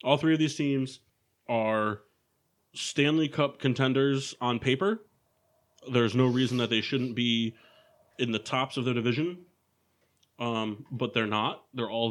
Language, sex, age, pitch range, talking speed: English, male, 30-49, 110-130 Hz, 150 wpm